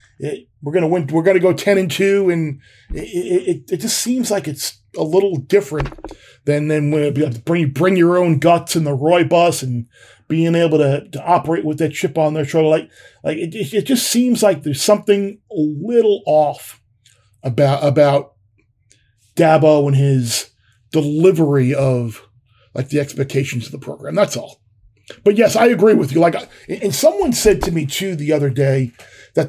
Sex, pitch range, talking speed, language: male, 140-185 Hz, 180 wpm, English